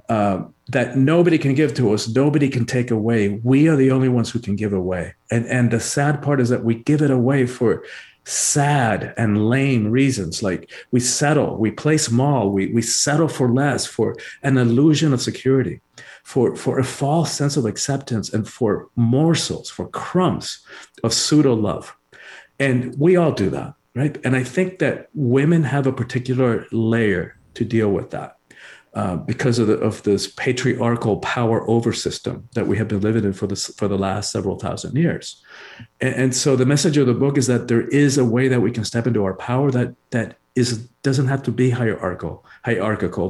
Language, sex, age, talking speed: English, male, 50-69, 190 wpm